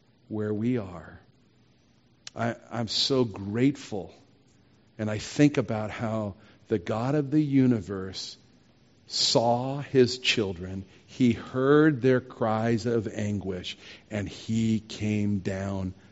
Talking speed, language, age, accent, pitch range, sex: 110 wpm, English, 50-69, American, 105-135 Hz, male